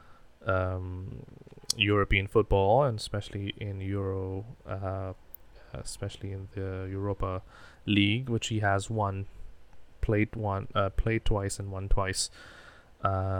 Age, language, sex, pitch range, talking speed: 20-39, English, male, 100-115 Hz, 115 wpm